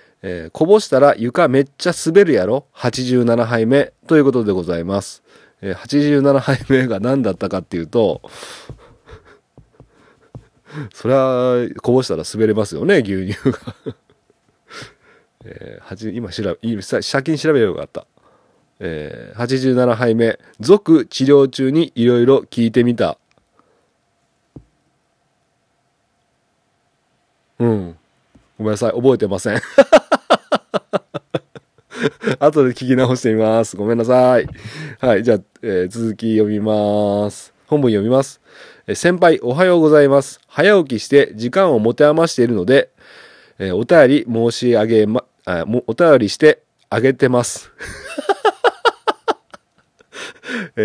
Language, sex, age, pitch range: Japanese, male, 40-59, 110-150 Hz